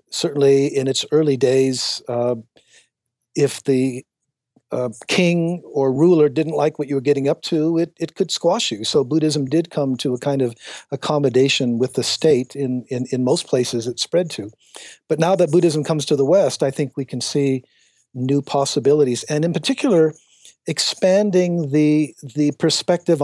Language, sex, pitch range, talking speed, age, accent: English, male, 125-155 Hz, 175 wpm, 50-69, American